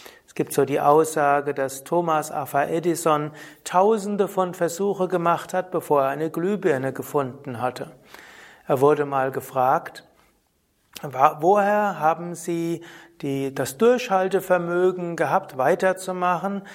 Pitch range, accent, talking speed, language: 145-185 Hz, German, 110 wpm, German